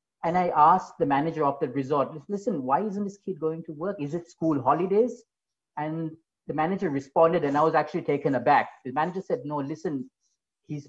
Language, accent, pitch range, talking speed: English, Indian, 135-170 Hz, 200 wpm